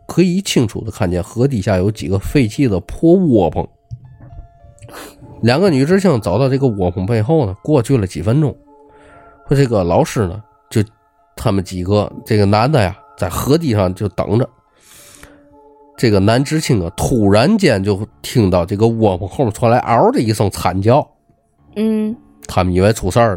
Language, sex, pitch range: Chinese, male, 95-140 Hz